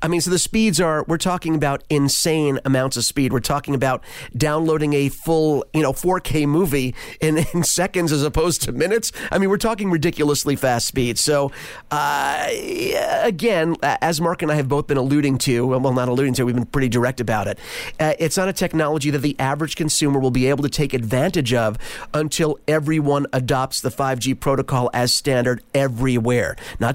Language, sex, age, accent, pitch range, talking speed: English, male, 40-59, American, 130-155 Hz, 190 wpm